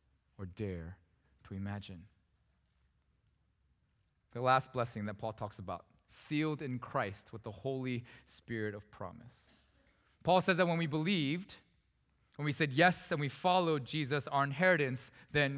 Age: 20-39